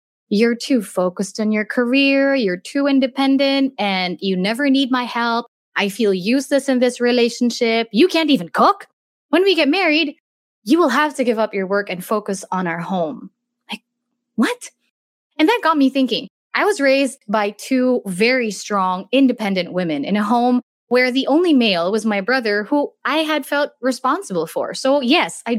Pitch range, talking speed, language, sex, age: 205-280 Hz, 180 wpm, English, female, 20-39